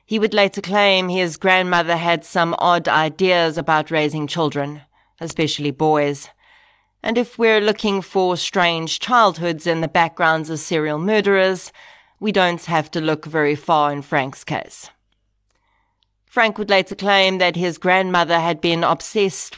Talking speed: 145 wpm